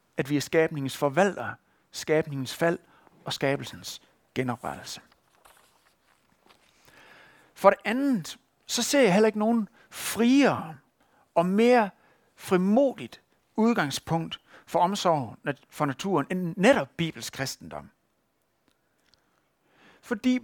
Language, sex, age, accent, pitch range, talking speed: Danish, male, 60-79, native, 145-225 Hz, 95 wpm